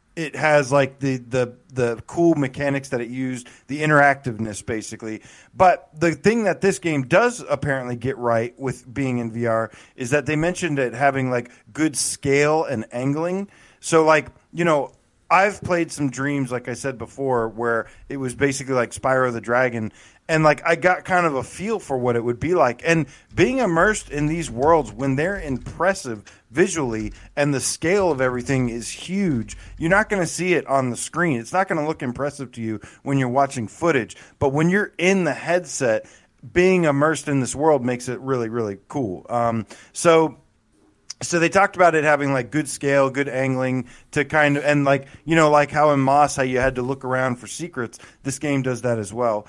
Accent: American